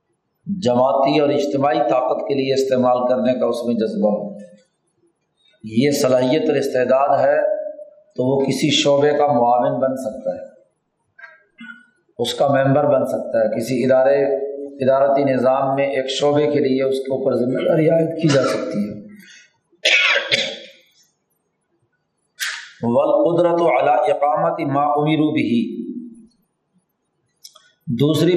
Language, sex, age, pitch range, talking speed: Urdu, male, 40-59, 130-160 Hz, 120 wpm